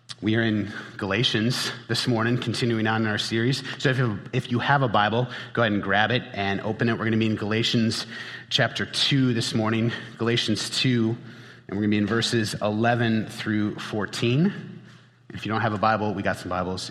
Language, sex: English, male